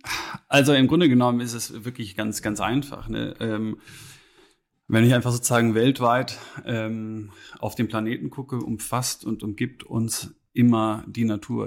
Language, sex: German, male